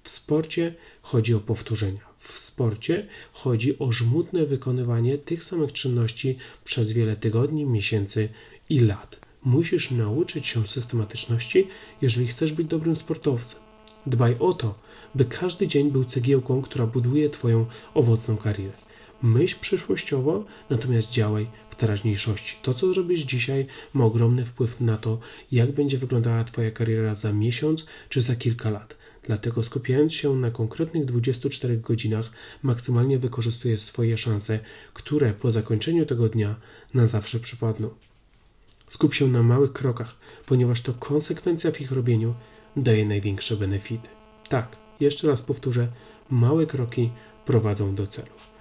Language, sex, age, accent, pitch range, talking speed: Polish, male, 40-59, native, 115-145 Hz, 135 wpm